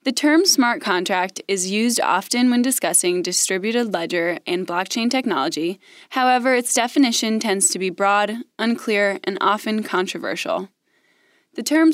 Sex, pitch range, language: female, 200-260 Hz, English